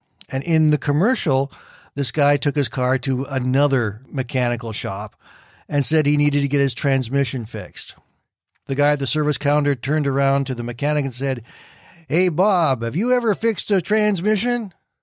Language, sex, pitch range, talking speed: English, male, 130-160 Hz, 170 wpm